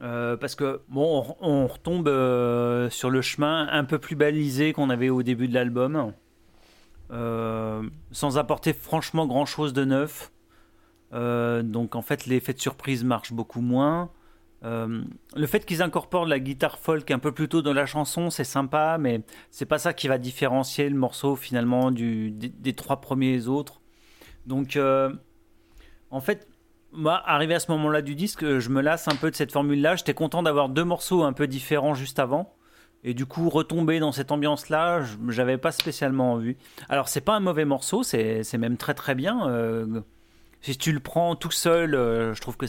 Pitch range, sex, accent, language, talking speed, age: 125-155 Hz, male, French, French, 195 wpm, 30-49